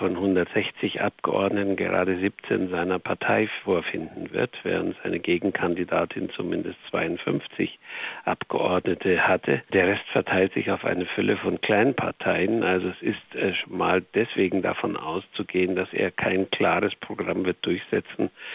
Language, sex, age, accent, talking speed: German, male, 60-79, German, 130 wpm